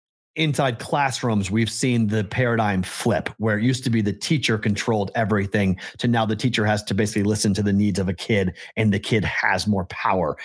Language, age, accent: English, 40-59, American